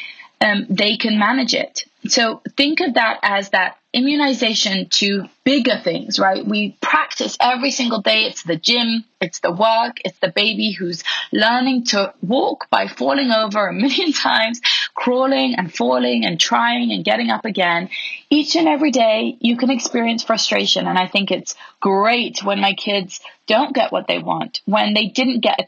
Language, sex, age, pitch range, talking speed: English, female, 30-49, 195-250 Hz, 180 wpm